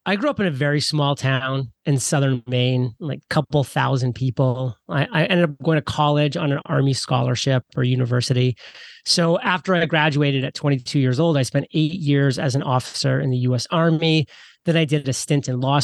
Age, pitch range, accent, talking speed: 30-49, 135-165 Hz, American, 210 wpm